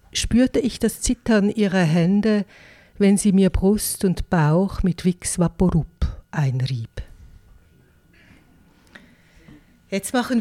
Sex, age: female, 60-79